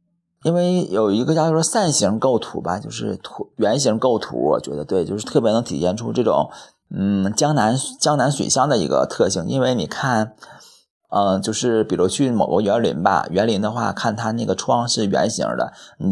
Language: Chinese